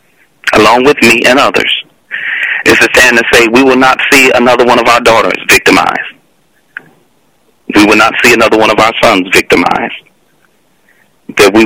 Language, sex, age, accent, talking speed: English, male, 40-59, American, 165 wpm